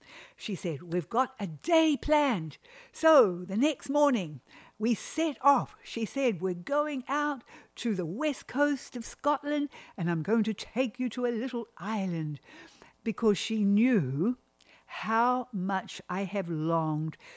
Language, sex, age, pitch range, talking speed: English, female, 60-79, 170-235 Hz, 150 wpm